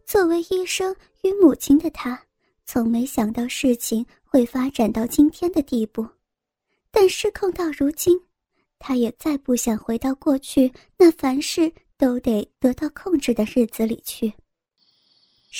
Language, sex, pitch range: Chinese, male, 235-320 Hz